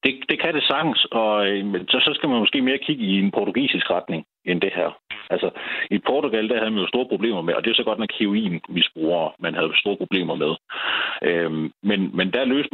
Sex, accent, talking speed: male, native, 230 wpm